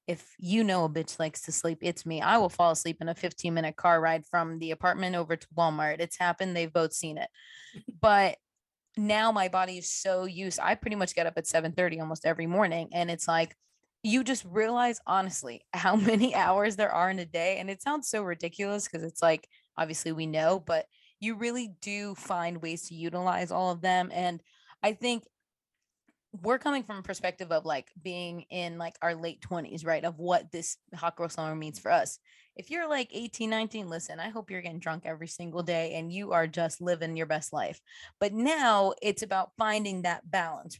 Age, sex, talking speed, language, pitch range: 20-39, female, 210 wpm, English, 165-200 Hz